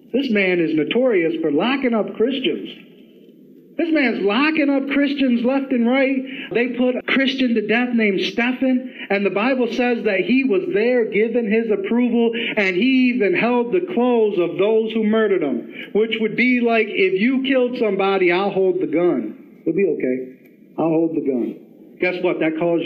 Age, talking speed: 50-69, 180 wpm